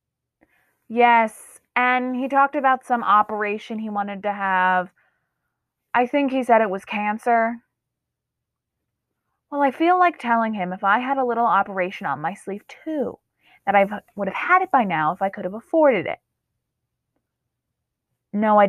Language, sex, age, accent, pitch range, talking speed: English, female, 20-39, American, 200-260 Hz, 160 wpm